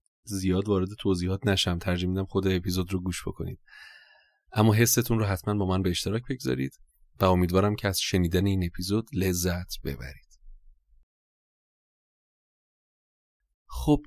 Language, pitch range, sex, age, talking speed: Persian, 85-100 Hz, male, 30-49, 130 wpm